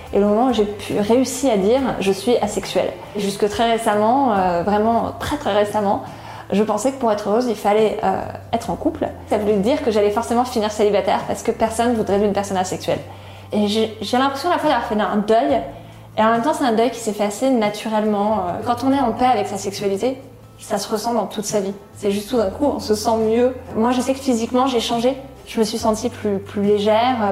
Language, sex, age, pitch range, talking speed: French, female, 20-39, 200-235 Hz, 240 wpm